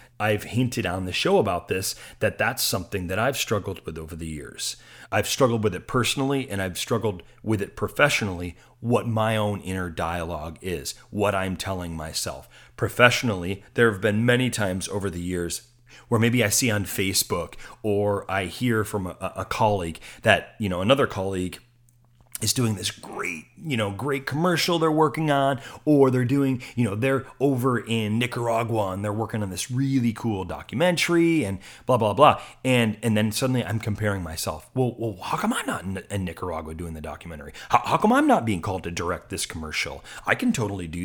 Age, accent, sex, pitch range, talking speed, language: 30-49, American, male, 95-125 Hz, 190 wpm, English